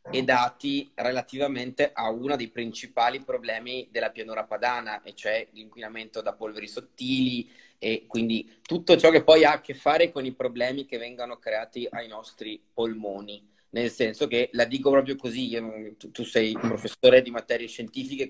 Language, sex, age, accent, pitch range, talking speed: Italian, male, 30-49, native, 115-135 Hz, 165 wpm